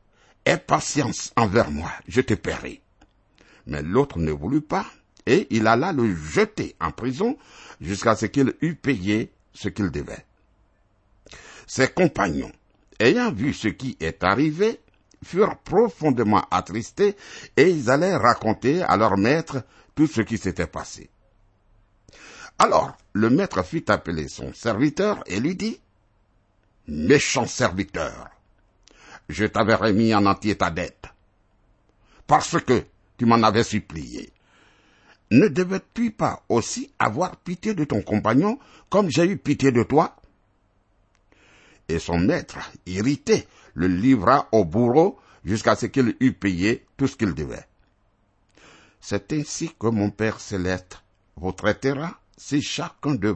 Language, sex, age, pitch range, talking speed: French, male, 60-79, 95-135 Hz, 140 wpm